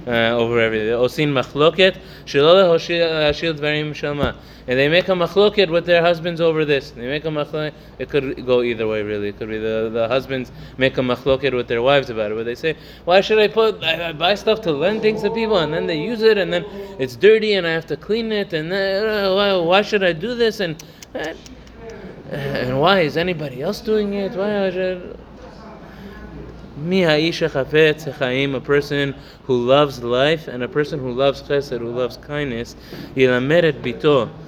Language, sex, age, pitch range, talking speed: English, male, 20-39, 125-170 Hz, 180 wpm